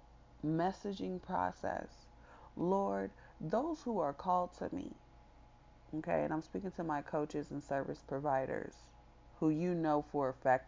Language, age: English, 30-49